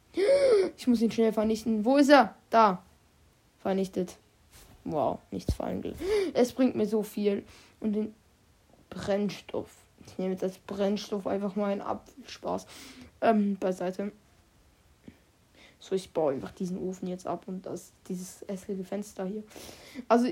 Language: German